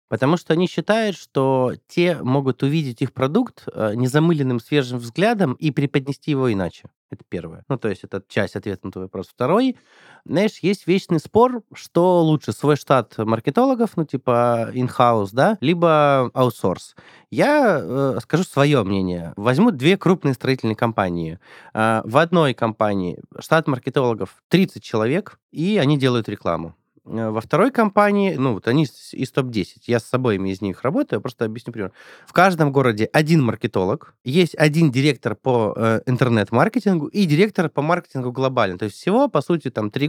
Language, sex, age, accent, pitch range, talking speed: Russian, male, 30-49, native, 115-165 Hz, 160 wpm